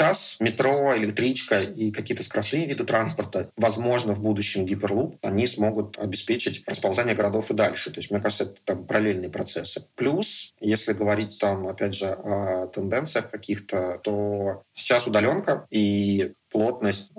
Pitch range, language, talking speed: 100-110 Hz, Russian, 145 wpm